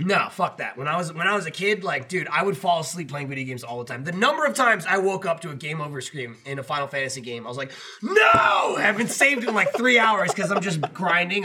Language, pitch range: English, 125-180 Hz